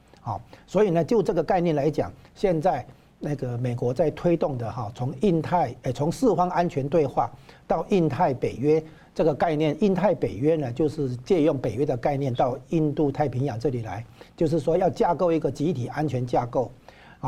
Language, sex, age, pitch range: Chinese, male, 60-79, 125-160 Hz